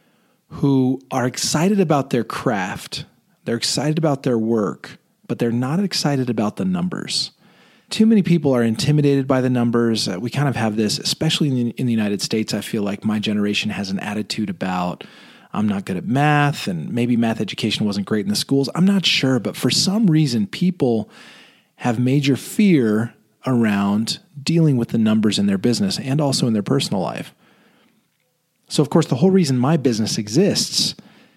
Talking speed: 180 wpm